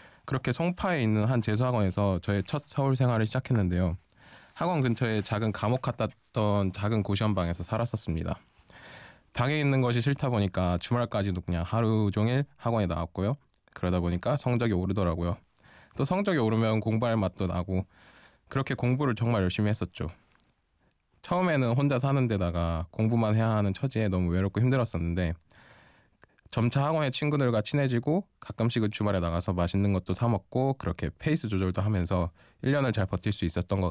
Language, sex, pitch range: Korean, male, 95-125 Hz